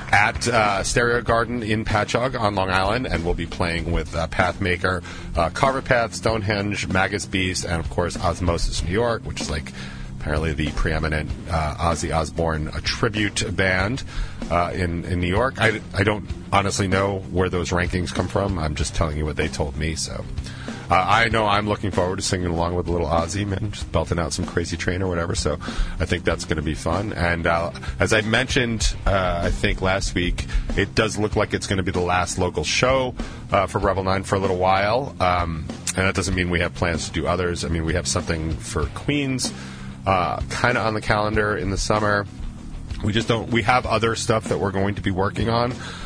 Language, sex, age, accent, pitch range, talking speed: English, male, 40-59, American, 85-105 Hz, 210 wpm